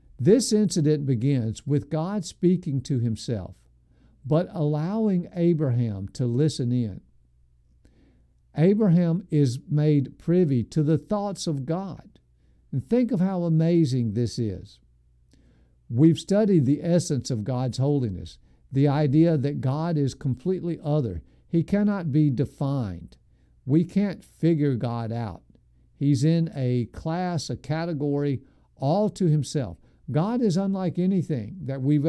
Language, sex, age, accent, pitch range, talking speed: English, male, 50-69, American, 115-170 Hz, 125 wpm